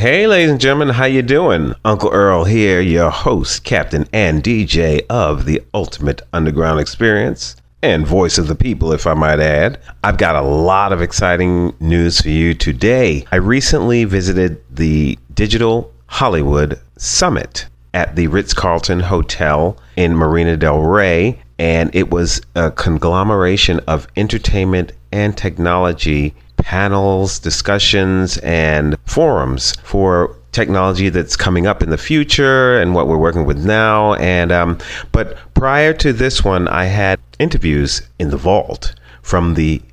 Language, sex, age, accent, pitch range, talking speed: English, male, 40-59, American, 75-100 Hz, 145 wpm